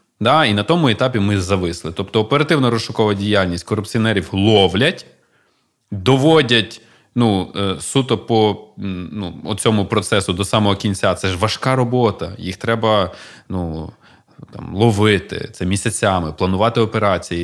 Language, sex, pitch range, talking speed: Ukrainian, male, 95-125 Hz, 120 wpm